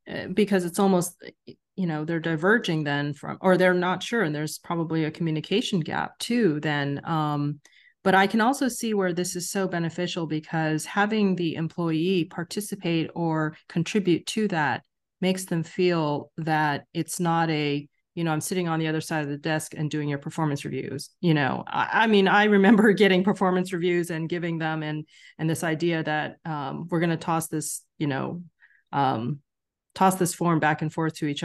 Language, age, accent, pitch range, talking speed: English, 30-49, American, 155-190 Hz, 190 wpm